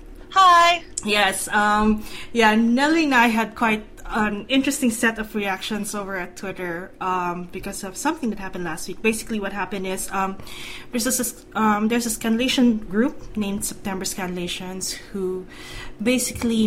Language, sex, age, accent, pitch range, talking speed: English, female, 20-39, Filipino, 185-225 Hz, 145 wpm